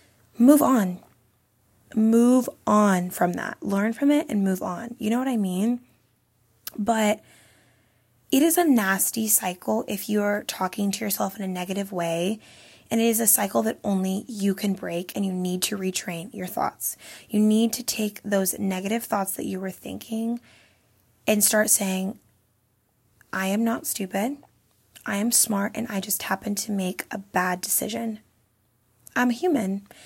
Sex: female